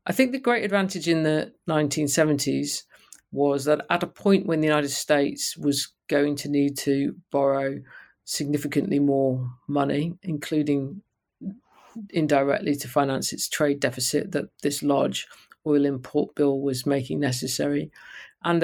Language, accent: English, British